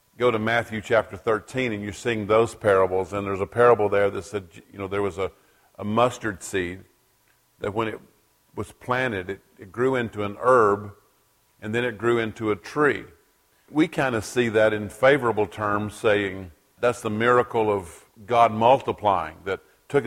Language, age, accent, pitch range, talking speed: English, 50-69, American, 105-125 Hz, 180 wpm